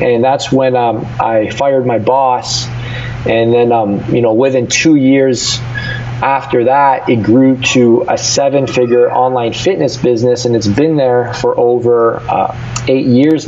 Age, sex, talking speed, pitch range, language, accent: 20-39, male, 160 wpm, 120-130 Hz, English, American